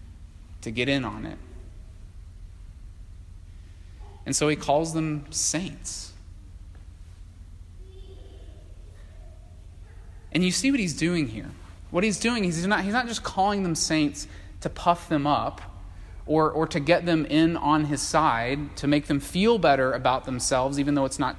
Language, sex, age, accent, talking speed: English, male, 20-39, American, 145 wpm